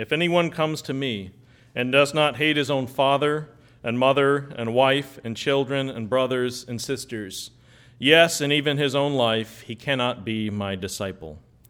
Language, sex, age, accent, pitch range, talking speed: English, male, 40-59, American, 110-135 Hz, 170 wpm